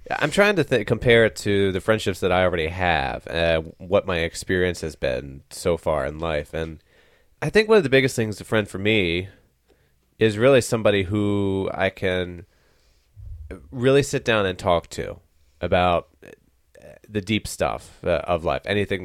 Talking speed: 175 wpm